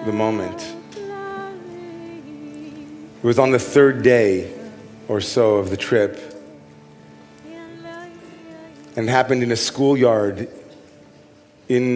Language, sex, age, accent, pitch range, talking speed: English, male, 40-59, American, 115-140 Hz, 100 wpm